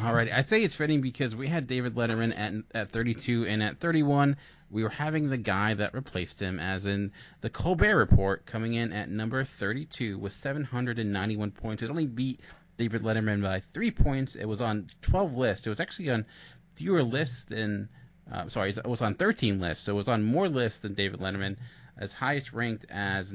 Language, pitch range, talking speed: English, 100-125 Hz, 195 wpm